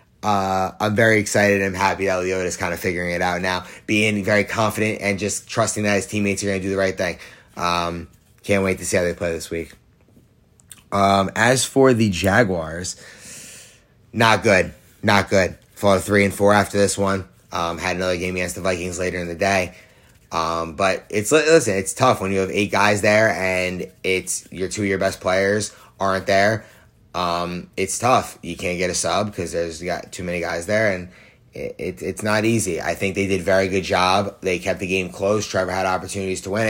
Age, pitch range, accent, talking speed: 20-39, 95-105 Hz, American, 210 wpm